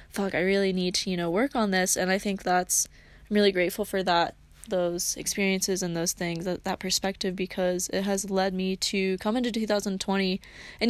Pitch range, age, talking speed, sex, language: 180-215 Hz, 20-39, 205 wpm, female, English